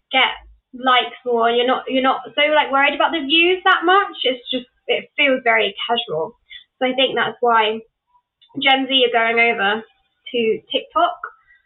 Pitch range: 235-320 Hz